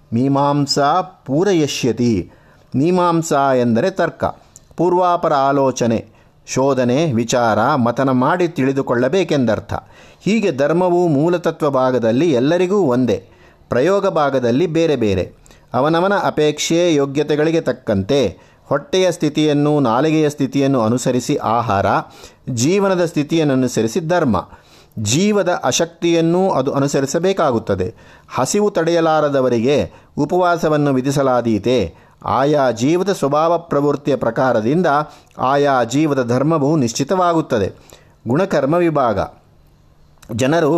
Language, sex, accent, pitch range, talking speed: Kannada, male, native, 130-170 Hz, 80 wpm